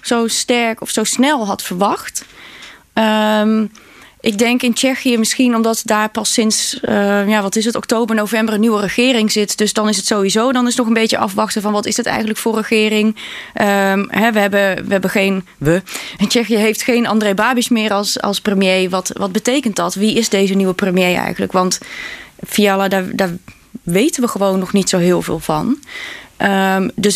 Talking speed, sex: 195 wpm, female